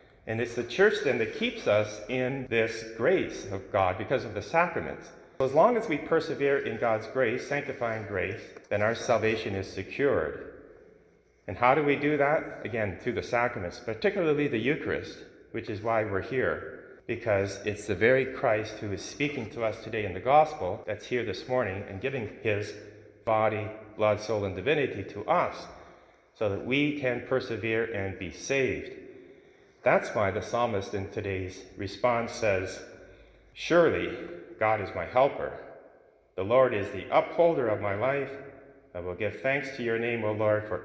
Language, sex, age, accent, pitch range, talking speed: English, male, 30-49, American, 100-130 Hz, 175 wpm